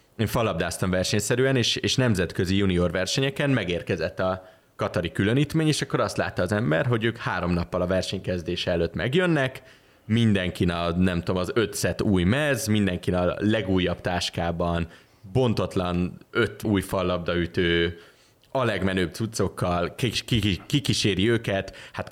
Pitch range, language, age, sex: 90-115 Hz, Hungarian, 30-49, male